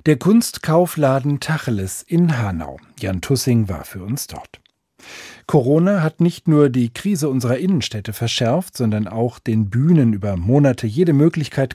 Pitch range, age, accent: 110-150 Hz, 40-59, German